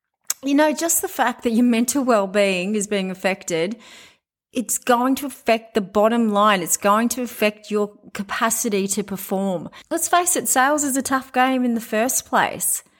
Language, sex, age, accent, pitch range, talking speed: English, female, 30-49, Australian, 205-250 Hz, 180 wpm